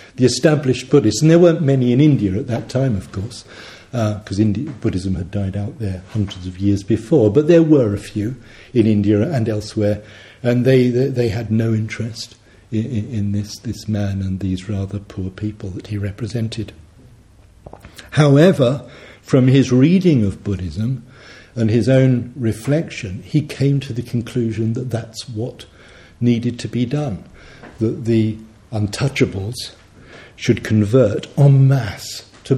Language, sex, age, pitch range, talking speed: English, male, 60-79, 105-135 Hz, 160 wpm